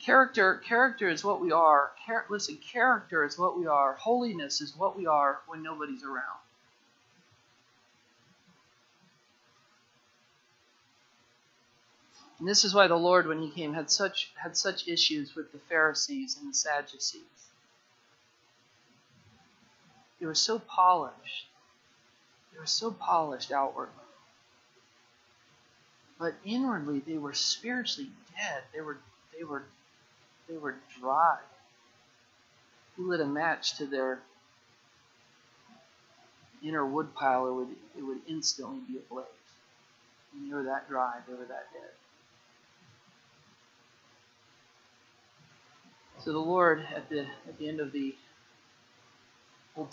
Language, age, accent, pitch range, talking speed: English, 50-69, American, 120-160 Hz, 120 wpm